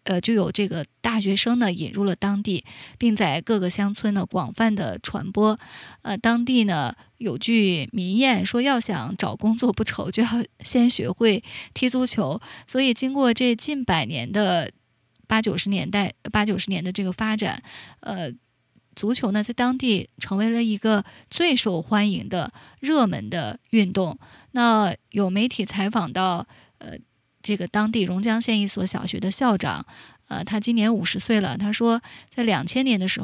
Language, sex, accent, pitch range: Chinese, female, native, 190-230 Hz